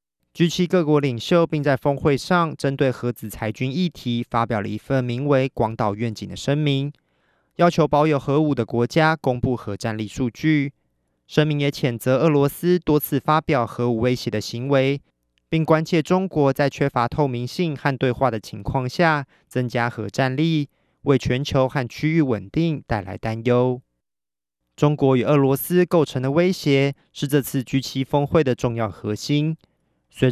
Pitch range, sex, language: 120-150 Hz, male, Chinese